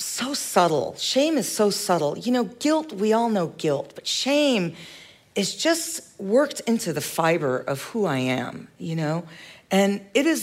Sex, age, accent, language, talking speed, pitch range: female, 40-59, American, English, 175 wpm, 190-235 Hz